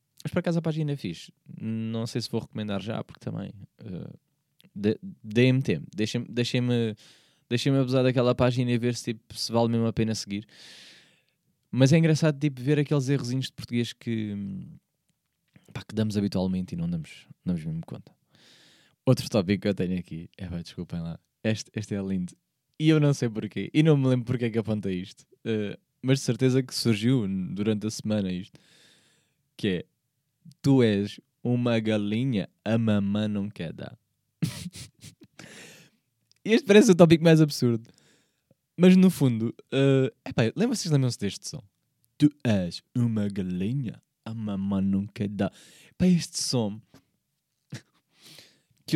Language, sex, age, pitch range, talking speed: Portuguese, male, 20-39, 105-145 Hz, 160 wpm